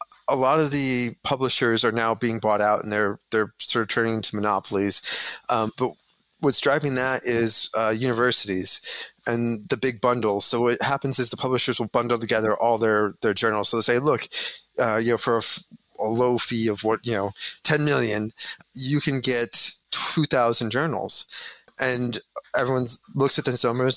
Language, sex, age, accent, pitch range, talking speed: English, male, 20-39, American, 110-130 Hz, 185 wpm